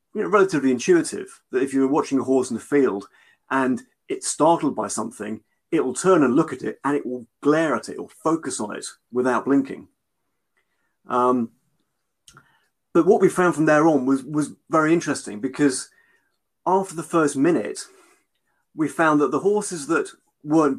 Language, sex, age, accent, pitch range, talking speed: English, male, 30-49, British, 125-155 Hz, 170 wpm